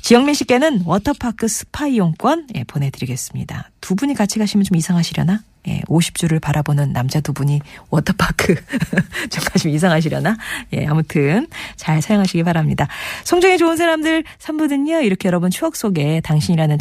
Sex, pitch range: female, 150-230 Hz